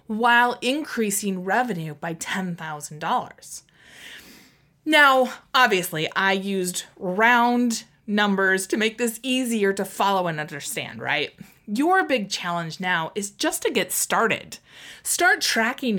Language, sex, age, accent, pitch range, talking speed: English, female, 30-49, American, 195-250 Hz, 115 wpm